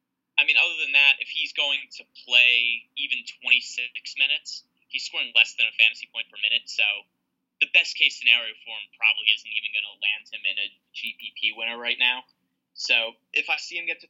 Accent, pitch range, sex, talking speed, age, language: American, 120-145 Hz, male, 205 wpm, 20-39, English